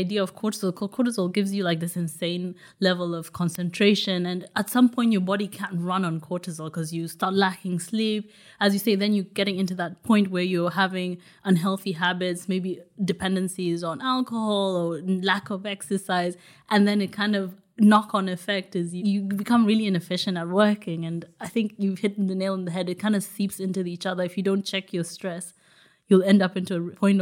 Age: 20-39